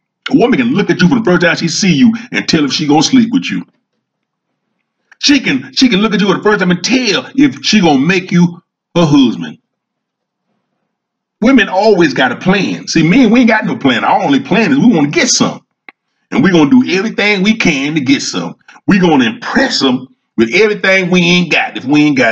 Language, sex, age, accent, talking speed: English, male, 40-59, American, 240 wpm